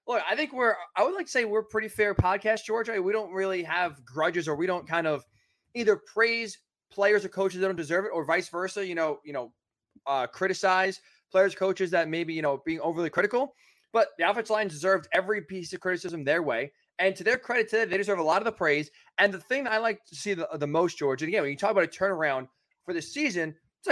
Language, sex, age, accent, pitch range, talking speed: English, male, 20-39, American, 165-220 Hz, 245 wpm